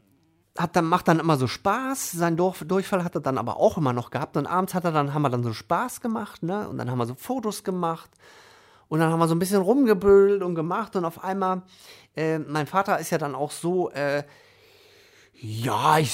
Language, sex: German, male